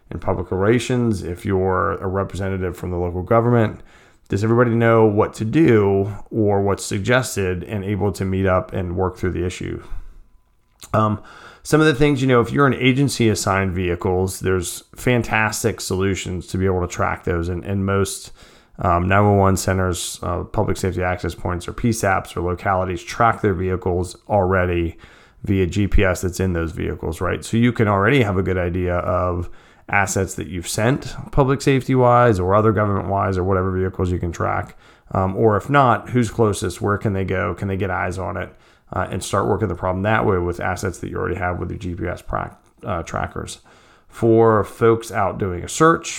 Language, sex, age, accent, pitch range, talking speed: English, male, 30-49, American, 90-110 Hz, 190 wpm